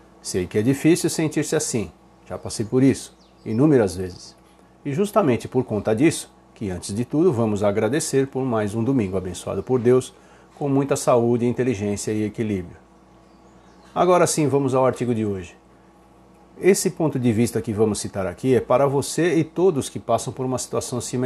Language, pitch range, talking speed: Portuguese, 115-150 Hz, 170 wpm